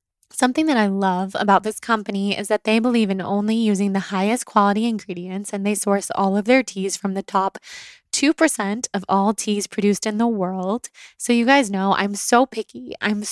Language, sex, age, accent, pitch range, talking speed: English, female, 20-39, American, 195-225 Hz, 200 wpm